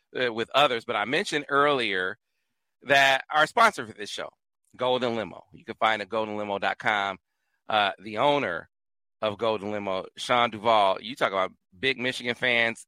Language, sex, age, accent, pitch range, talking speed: English, male, 40-59, American, 115-150 Hz, 160 wpm